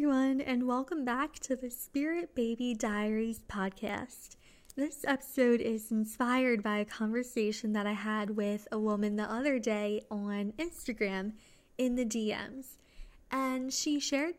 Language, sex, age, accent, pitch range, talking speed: English, female, 10-29, American, 210-255 Hz, 140 wpm